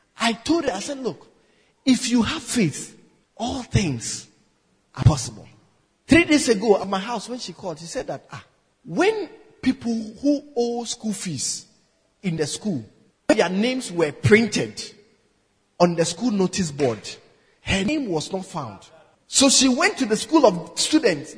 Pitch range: 180-260 Hz